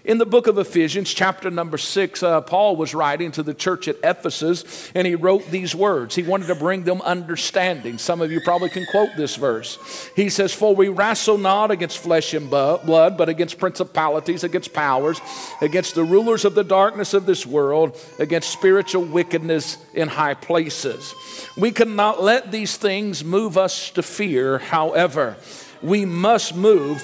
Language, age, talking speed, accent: English, 50-69, 175 wpm, American